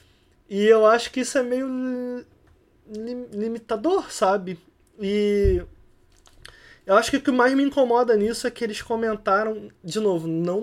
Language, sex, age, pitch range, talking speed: Portuguese, male, 20-39, 180-230 Hz, 145 wpm